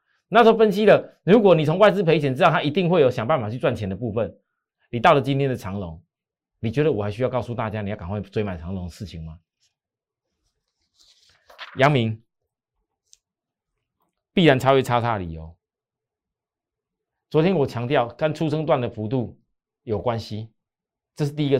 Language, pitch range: Chinese, 110-160 Hz